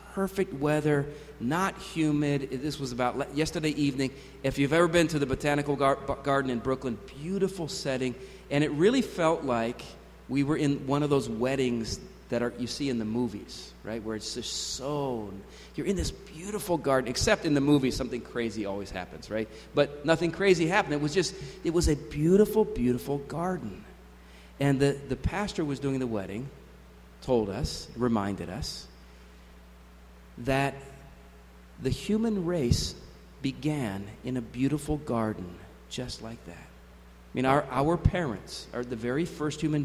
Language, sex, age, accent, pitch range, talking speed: English, male, 40-59, American, 110-175 Hz, 160 wpm